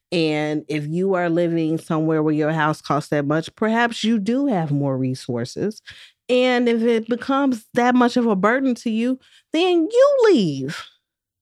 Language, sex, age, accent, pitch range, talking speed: English, female, 30-49, American, 155-235 Hz, 170 wpm